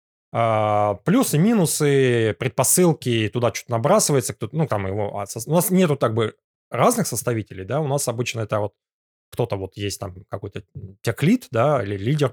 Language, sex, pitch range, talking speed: Russian, male, 110-140 Hz, 155 wpm